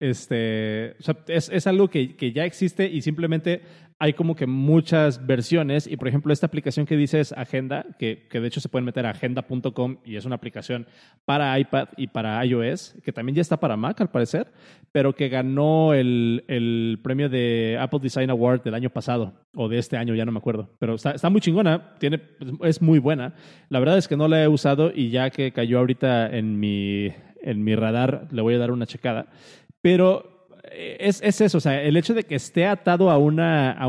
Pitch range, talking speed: 120-160 Hz, 205 wpm